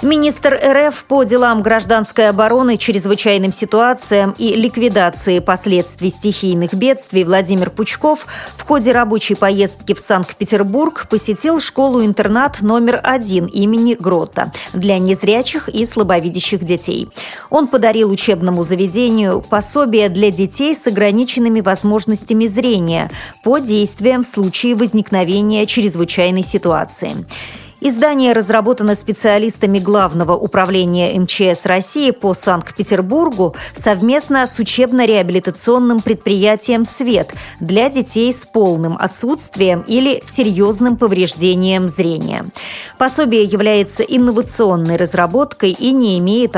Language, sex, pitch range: Russian, female, 190-240 Hz